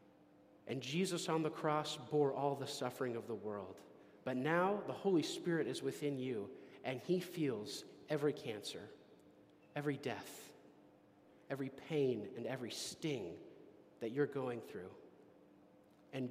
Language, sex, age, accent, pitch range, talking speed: English, male, 40-59, American, 130-165 Hz, 135 wpm